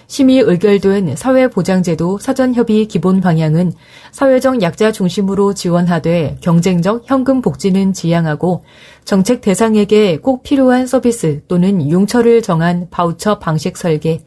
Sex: female